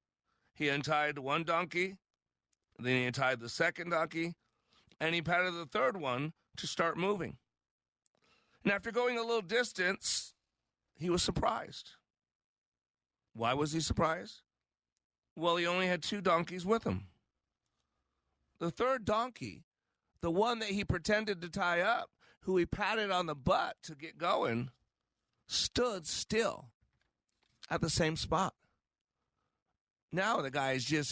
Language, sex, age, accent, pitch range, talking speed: English, male, 40-59, American, 135-190 Hz, 135 wpm